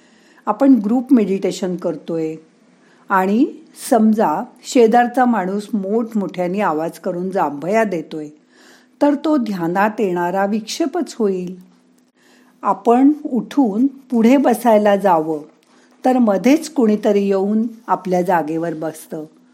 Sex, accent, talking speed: female, native, 100 wpm